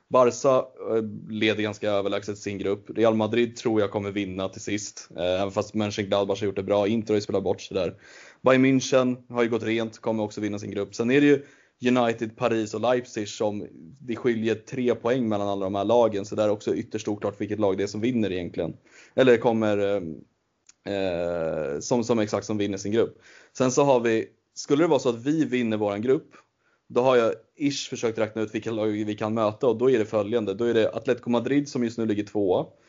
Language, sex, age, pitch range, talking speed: Swedish, male, 20-39, 105-120 Hz, 225 wpm